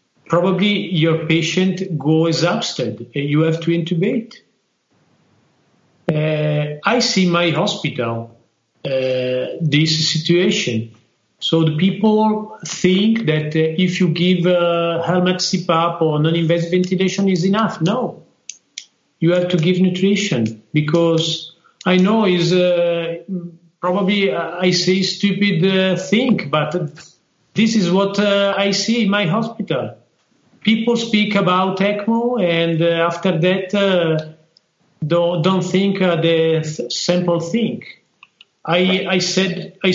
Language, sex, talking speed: English, male, 120 wpm